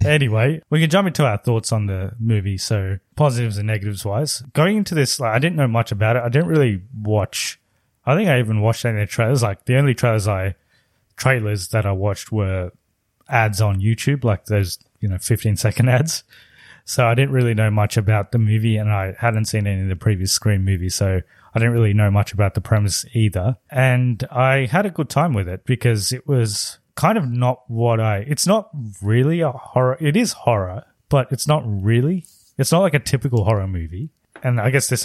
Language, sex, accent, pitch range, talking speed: English, male, Australian, 105-130 Hz, 215 wpm